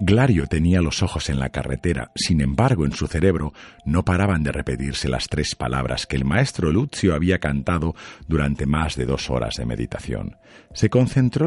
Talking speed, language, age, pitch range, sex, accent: 180 wpm, Spanish, 50-69, 65-95 Hz, male, Spanish